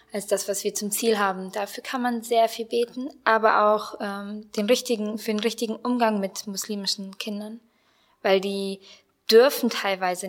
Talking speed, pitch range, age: 170 wpm, 200-230 Hz, 20-39